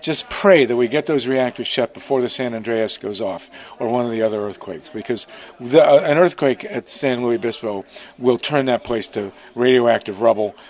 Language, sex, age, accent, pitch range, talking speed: English, male, 50-69, American, 120-145 Hz, 195 wpm